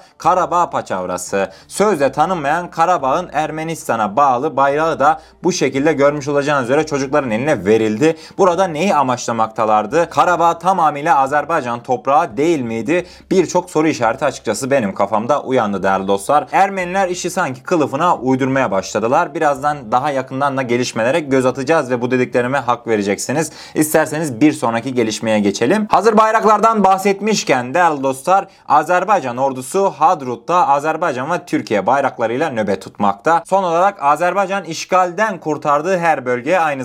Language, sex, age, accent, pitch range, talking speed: Turkish, male, 30-49, native, 125-175 Hz, 130 wpm